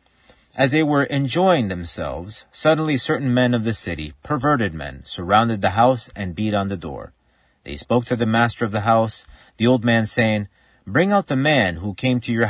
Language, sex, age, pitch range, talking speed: English, male, 40-59, 95-125 Hz, 195 wpm